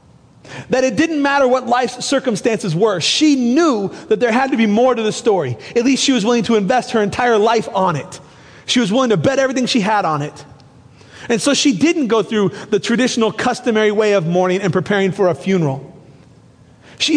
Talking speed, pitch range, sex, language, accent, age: 205 wpm, 185-260 Hz, male, English, American, 30-49